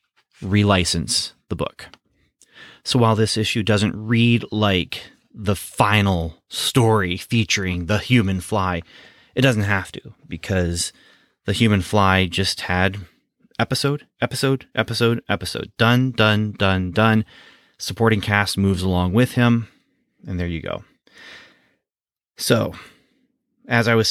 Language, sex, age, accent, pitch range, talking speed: English, male, 30-49, American, 95-115 Hz, 120 wpm